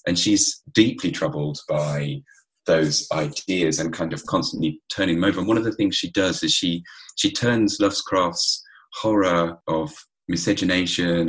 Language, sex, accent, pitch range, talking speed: English, male, British, 80-110 Hz, 155 wpm